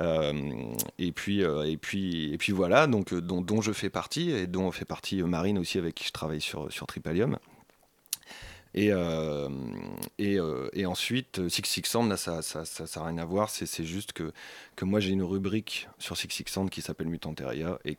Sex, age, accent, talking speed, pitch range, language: male, 30-49, French, 195 wpm, 80-95 Hz, French